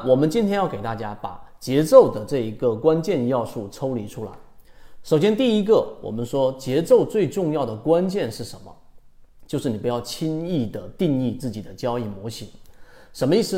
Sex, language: male, Chinese